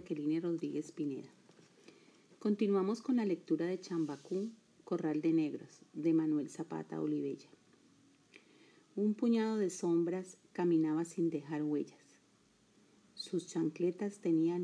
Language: Spanish